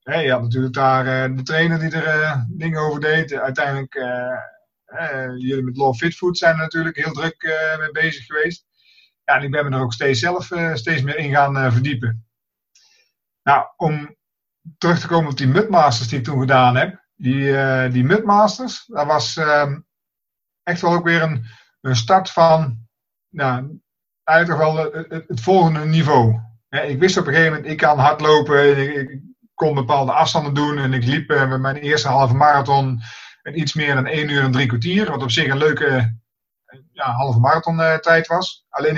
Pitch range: 135-165 Hz